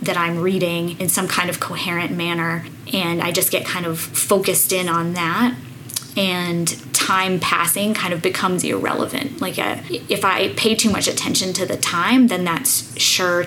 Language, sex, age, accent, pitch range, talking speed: English, female, 20-39, American, 170-190 Hz, 175 wpm